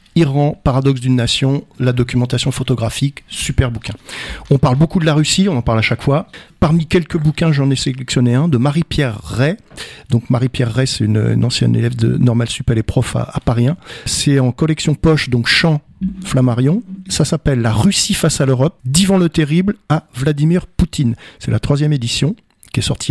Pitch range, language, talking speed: 125-160 Hz, French, 200 wpm